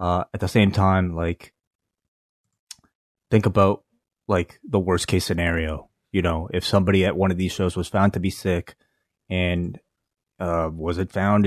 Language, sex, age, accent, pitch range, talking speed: English, male, 20-39, American, 90-110 Hz, 165 wpm